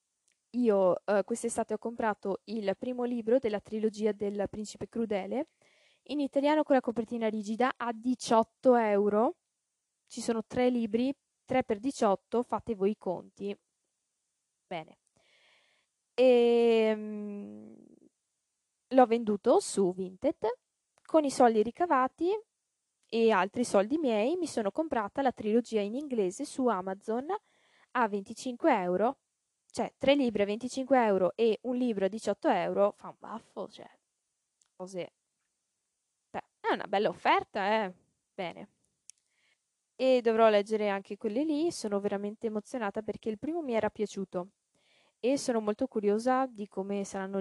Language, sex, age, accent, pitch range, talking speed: Italian, female, 20-39, native, 205-255 Hz, 135 wpm